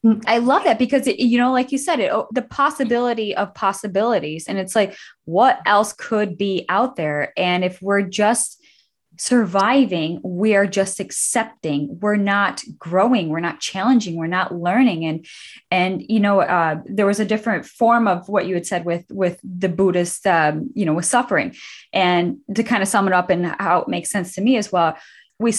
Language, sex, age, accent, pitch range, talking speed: English, female, 10-29, American, 180-230 Hz, 195 wpm